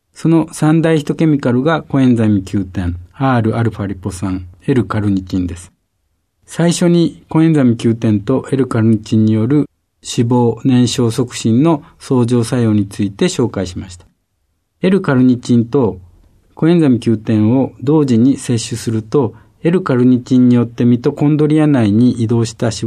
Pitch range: 105-145 Hz